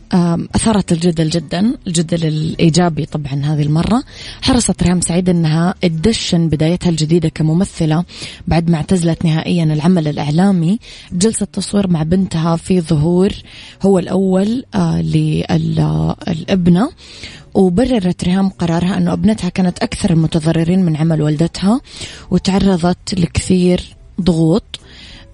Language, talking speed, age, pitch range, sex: English, 105 wpm, 20-39, 165-190 Hz, female